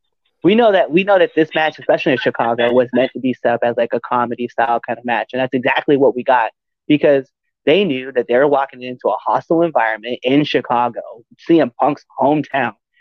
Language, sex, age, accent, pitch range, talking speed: English, male, 30-49, American, 130-190 Hz, 215 wpm